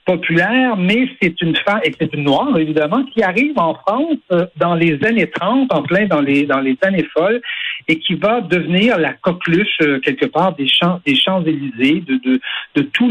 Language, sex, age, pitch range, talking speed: French, male, 60-79, 150-220 Hz, 205 wpm